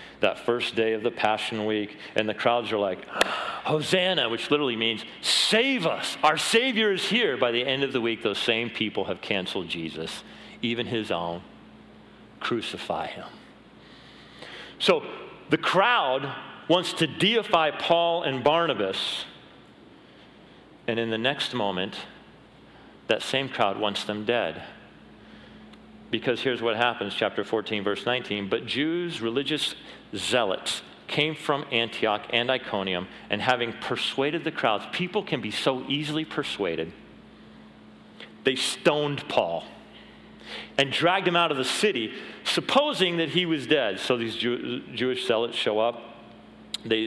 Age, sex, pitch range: 40-59, male, 115-155 Hz